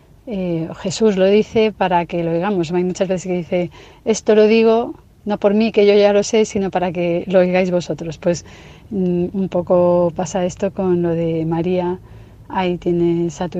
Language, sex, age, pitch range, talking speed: Spanish, female, 30-49, 175-195 Hz, 195 wpm